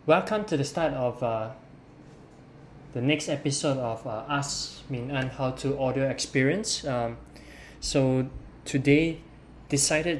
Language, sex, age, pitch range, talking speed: English, male, 20-39, 125-145 Hz, 125 wpm